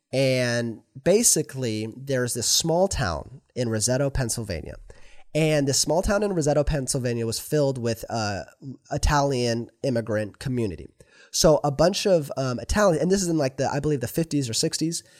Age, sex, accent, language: 20-39, male, American, English